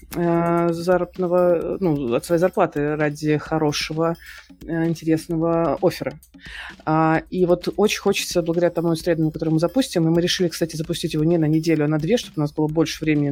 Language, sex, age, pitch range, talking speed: Russian, female, 30-49, 155-180 Hz, 165 wpm